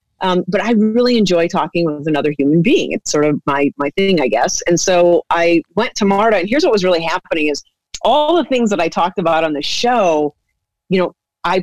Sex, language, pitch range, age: female, English, 160-195 Hz, 40-59